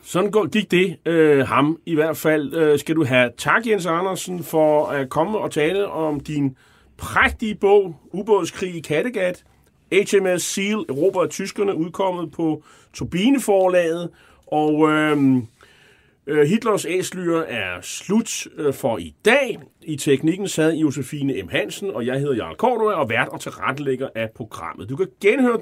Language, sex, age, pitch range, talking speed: Danish, male, 30-49, 140-205 Hz, 160 wpm